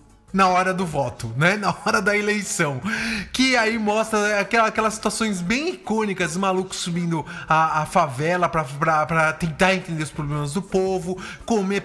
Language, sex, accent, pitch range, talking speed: English, male, Brazilian, 175-230 Hz, 155 wpm